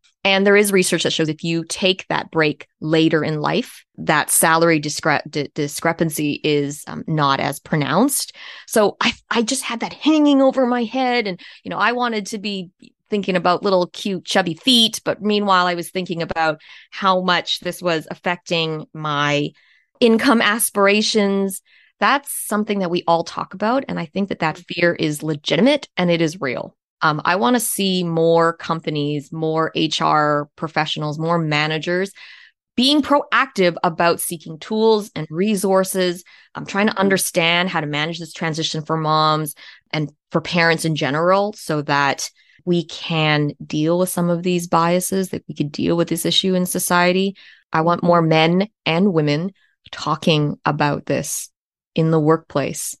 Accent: American